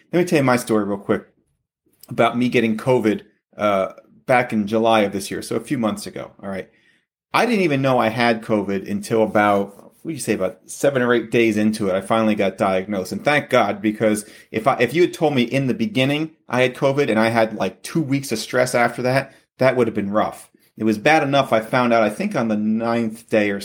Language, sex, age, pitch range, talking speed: English, male, 30-49, 105-125 Hz, 240 wpm